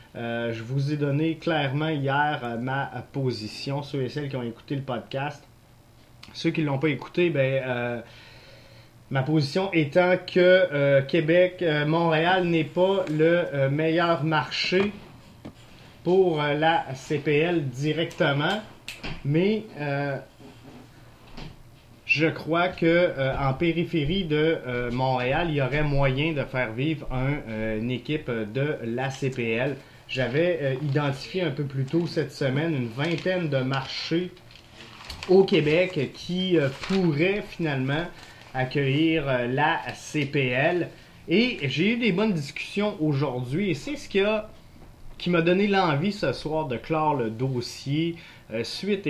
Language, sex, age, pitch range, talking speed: French, male, 30-49, 125-165 Hz, 140 wpm